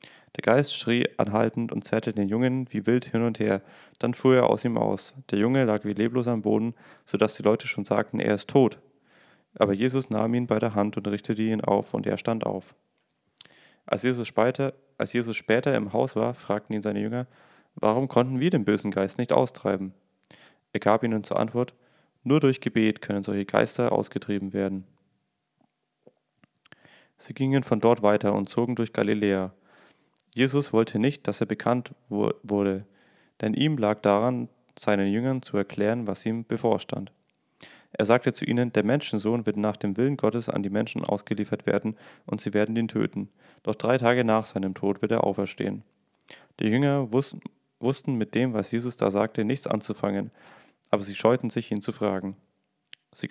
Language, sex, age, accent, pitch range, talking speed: German, male, 30-49, German, 105-125 Hz, 175 wpm